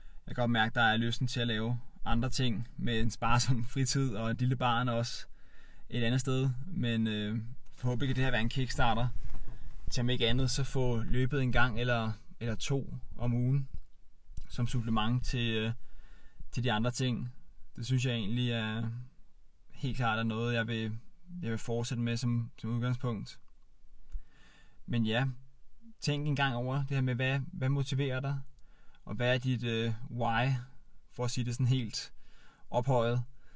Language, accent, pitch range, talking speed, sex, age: Danish, native, 115-130 Hz, 175 wpm, male, 20-39